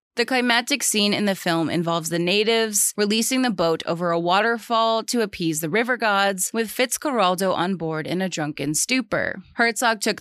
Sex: female